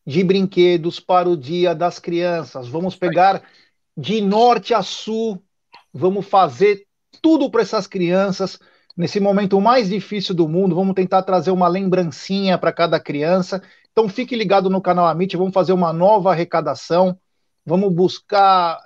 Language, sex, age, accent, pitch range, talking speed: Portuguese, male, 50-69, Brazilian, 175-225 Hz, 145 wpm